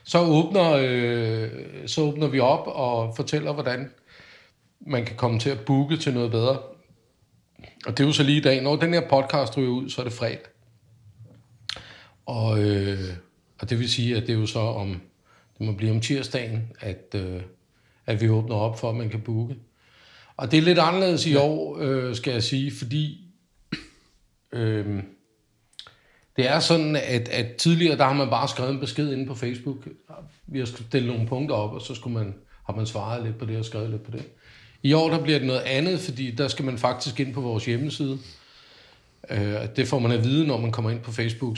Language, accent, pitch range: Danish, native, 110-140 Hz